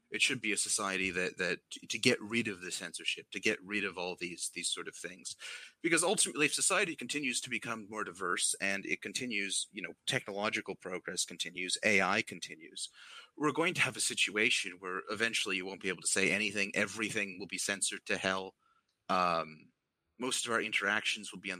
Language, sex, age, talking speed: English, male, 30-49, 195 wpm